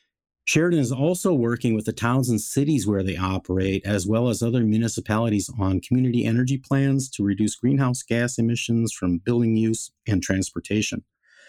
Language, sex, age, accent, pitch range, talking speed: English, male, 50-69, American, 105-135 Hz, 160 wpm